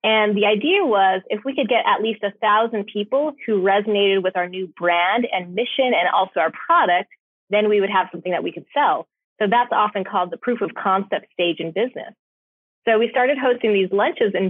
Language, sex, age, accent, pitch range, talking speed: English, female, 30-49, American, 195-240 Hz, 215 wpm